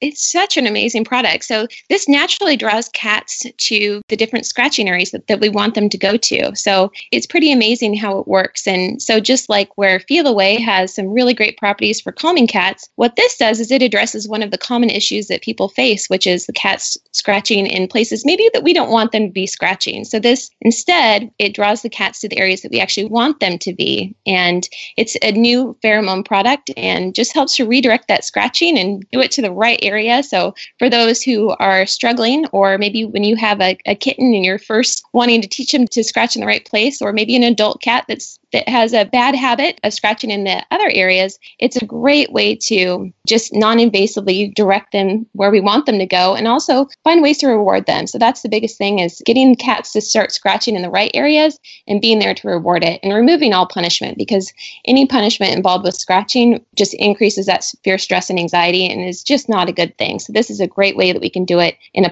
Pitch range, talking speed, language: 195-245 Hz, 230 wpm, English